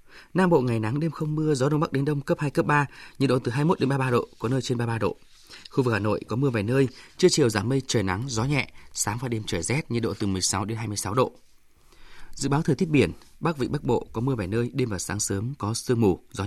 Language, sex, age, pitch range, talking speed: Vietnamese, male, 20-39, 110-140 Hz, 275 wpm